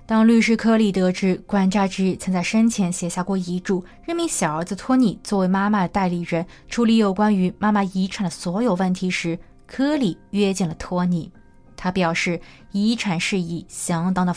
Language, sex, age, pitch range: Chinese, female, 20-39, 180-225 Hz